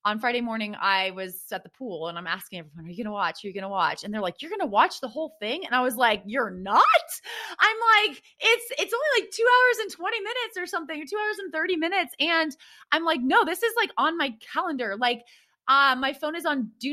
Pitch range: 205-295 Hz